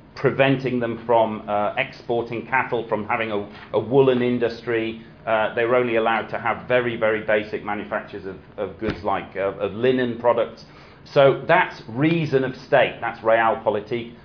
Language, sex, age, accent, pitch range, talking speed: English, male, 40-59, British, 115-140 Hz, 155 wpm